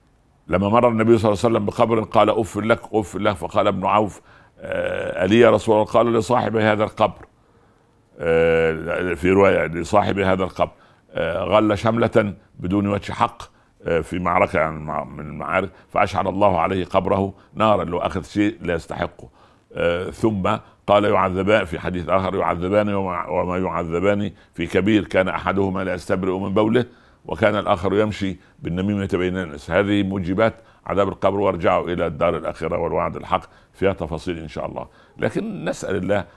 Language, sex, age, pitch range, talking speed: Arabic, male, 60-79, 90-110 Hz, 145 wpm